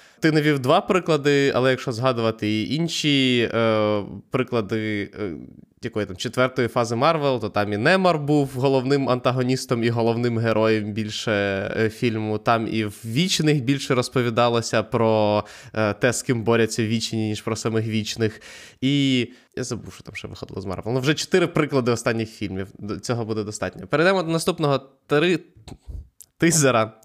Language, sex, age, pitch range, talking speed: Ukrainian, male, 20-39, 110-145 Hz, 160 wpm